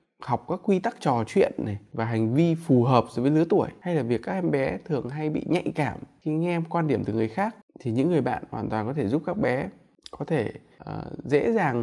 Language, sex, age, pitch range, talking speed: Vietnamese, male, 20-39, 125-185 Hz, 250 wpm